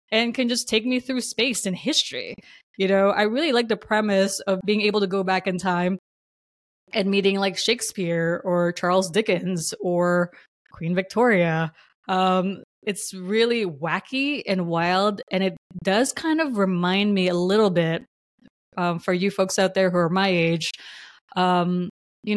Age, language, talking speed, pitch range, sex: 20-39, English, 165 wpm, 175-215 Hz, female